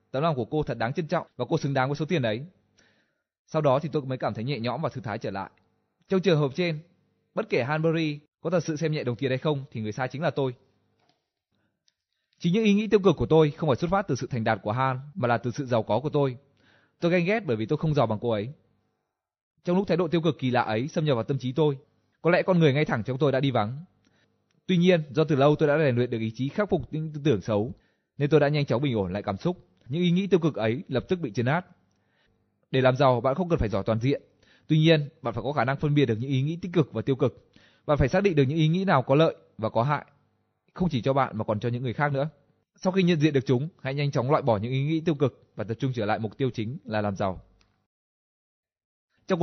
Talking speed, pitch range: 285 wpm, 120-160 Hz